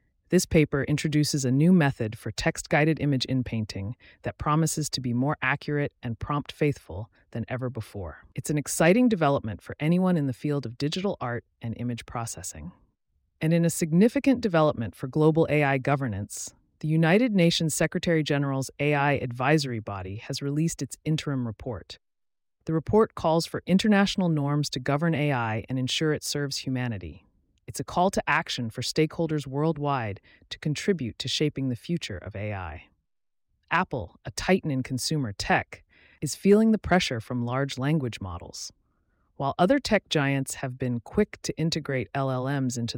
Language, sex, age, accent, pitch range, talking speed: English, female, 30-49, American, 120-160 Hz, 160 wpm